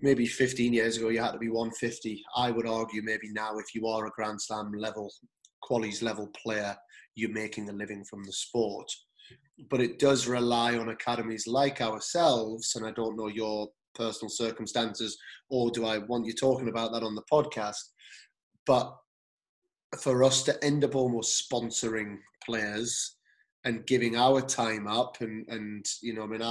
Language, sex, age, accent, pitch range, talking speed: English, male, 30-49, British, 110-120 Hz, 175 wpm